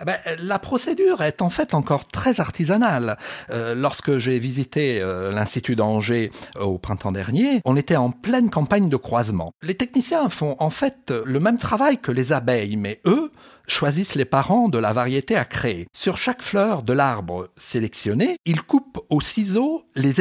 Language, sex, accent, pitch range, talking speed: French, male, French, 120-190 Hz, 180 wpm